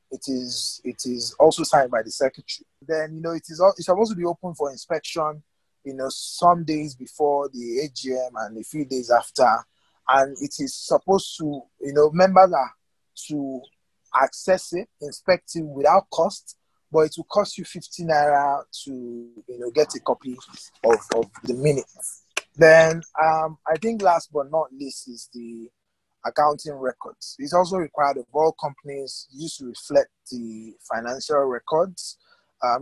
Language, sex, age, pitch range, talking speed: English, male, 20-39, 130-170 Hz, 165 wpm